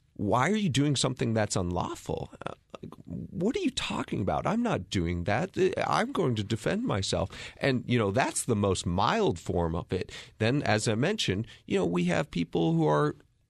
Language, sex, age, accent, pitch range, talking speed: English, male, 40-59, American, 95-135 Hz, 185 wpm